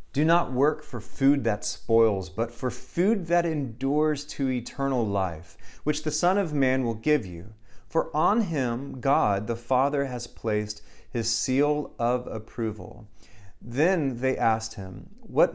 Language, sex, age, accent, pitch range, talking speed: English, male, 30-49, American, 100-135 Hz, 155 wpm